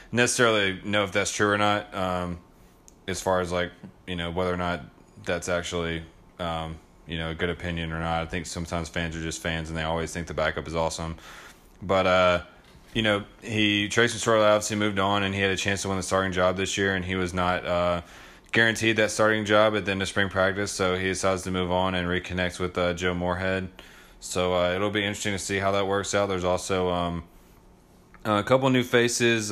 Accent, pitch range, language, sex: American, 90-100 Hz, English, male